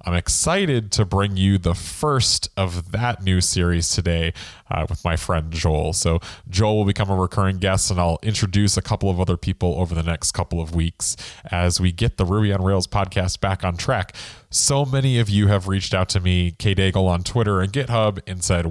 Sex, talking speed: male, 210 wpm